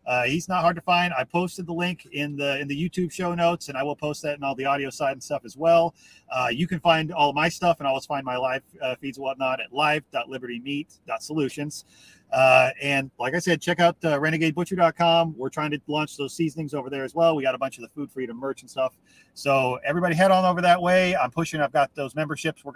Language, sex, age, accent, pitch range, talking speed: English, male, 30-49, American, 135-165 Hz, 250 wpm